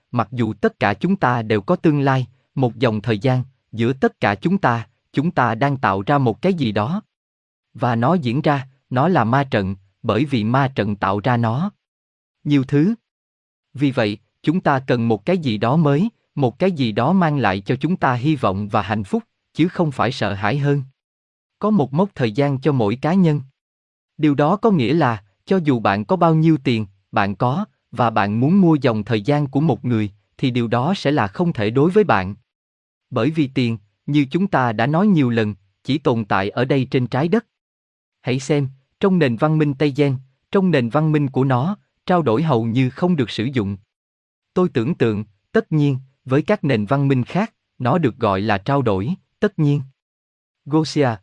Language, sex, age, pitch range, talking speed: Vietnamese, male, 20-39, 110-155 Hz, 210 wpm